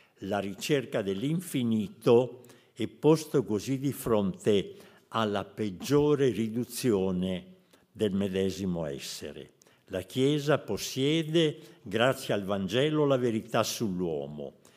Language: Polish